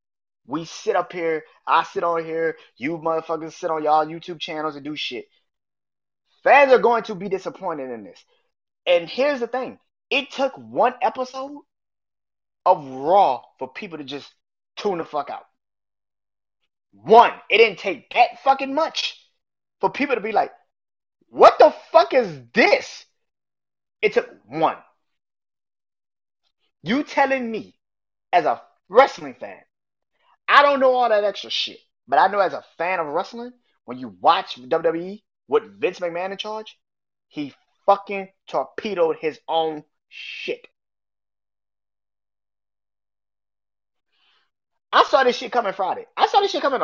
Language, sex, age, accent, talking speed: English, male, 20-39, American, 145 wpm